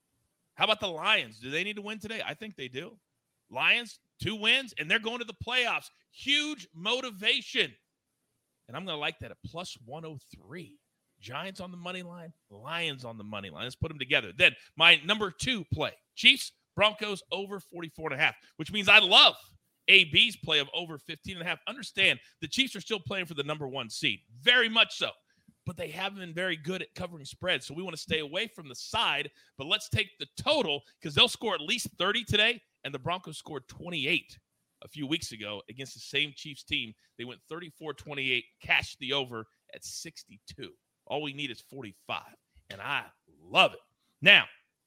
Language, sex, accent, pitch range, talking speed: English, male, American, 140-210 Hz, 200 wpm